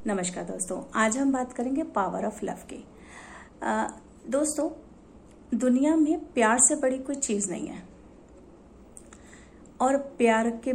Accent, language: native, Hindi